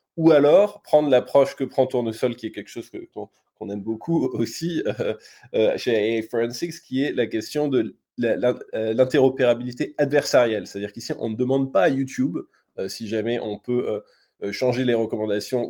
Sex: male